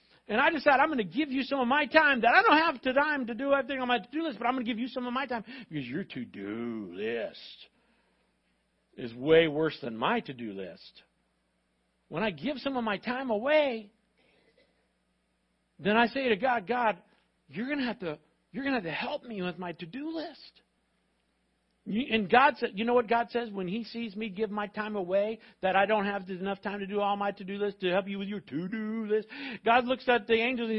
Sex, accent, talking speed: male, American, 225 wpm